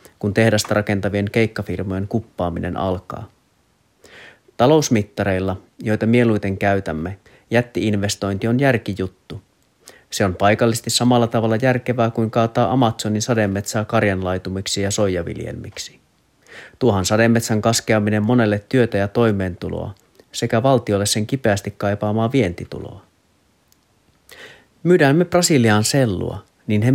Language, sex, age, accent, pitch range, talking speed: Finnish, male, 30-49, native, 100-120 Hz, 100 wpm